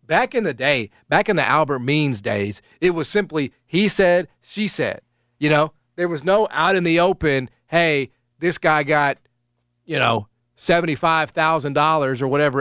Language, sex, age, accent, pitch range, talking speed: English, male, 30-49, American, 130-175 Hz, 165 wpm